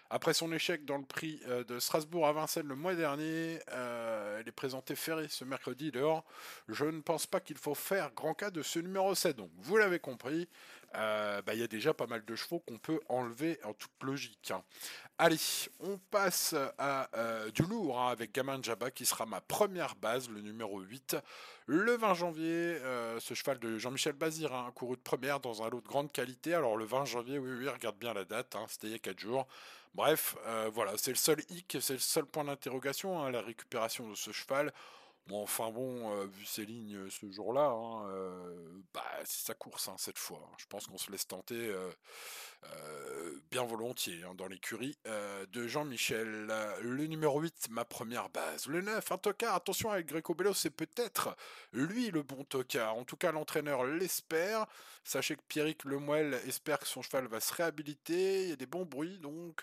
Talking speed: 200 wpm